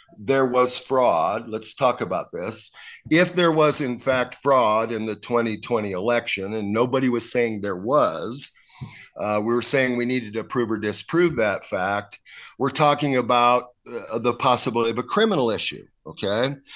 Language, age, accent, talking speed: English, 50-69, American, 165 wpm